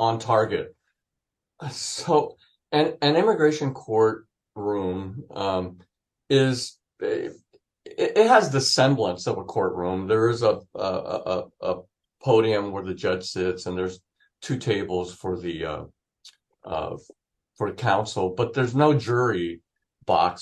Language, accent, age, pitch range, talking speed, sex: English, American, 50-69, 95-135 Hz, 135 wpm, male